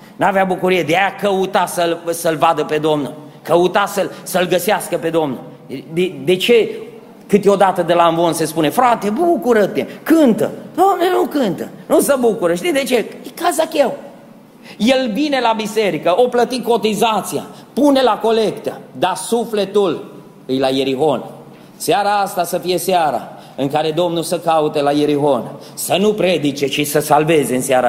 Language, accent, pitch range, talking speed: Romanian, native, 165-260 Hz, 160 wpm